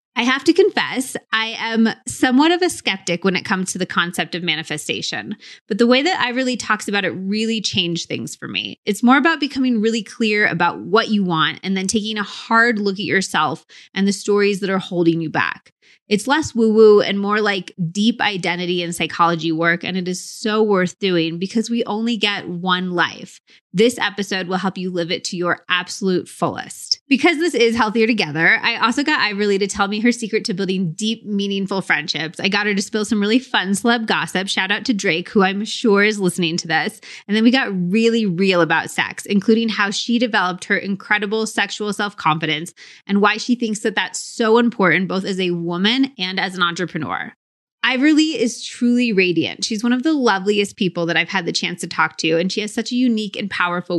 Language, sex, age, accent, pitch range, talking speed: English, female, 20-39, American, 180-225 Hz, 210 wpm